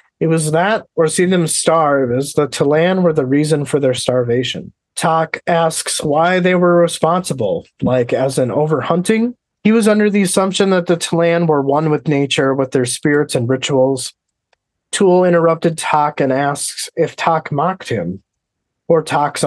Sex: male